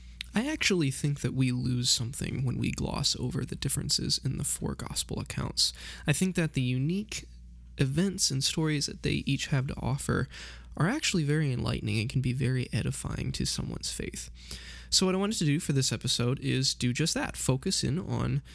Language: English